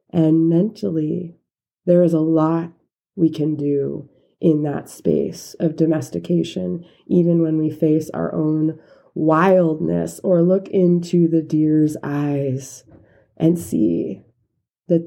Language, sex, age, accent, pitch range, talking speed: English, female, 20-39, American, 155-185 Hz, 120 wpm